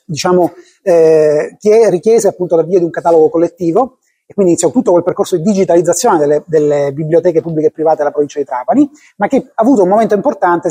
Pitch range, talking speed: 165-210 Hz, 195 wpm